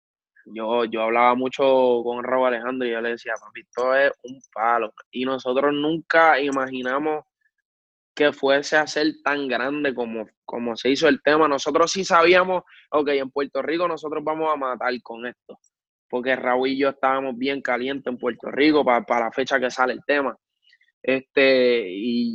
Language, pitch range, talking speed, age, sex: Spanish, 125-145 Hz, 175 wpm, 20-39, male